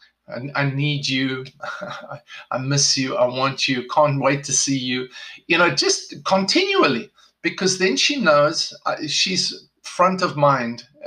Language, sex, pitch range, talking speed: English, male, 140-185 Hz, 140 wpm